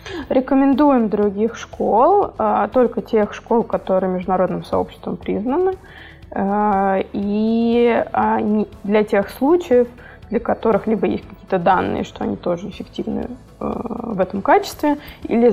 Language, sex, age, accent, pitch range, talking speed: Russian, female, 20-39, native, 180-235 Hz, 110 wpm